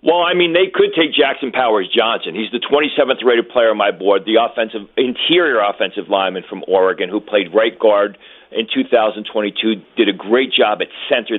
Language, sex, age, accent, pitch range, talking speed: English, male, 40-59, American, 105-150 Hz, 180 wpm